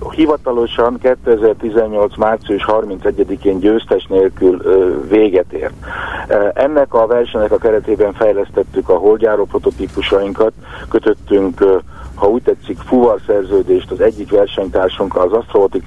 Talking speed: 105 wpm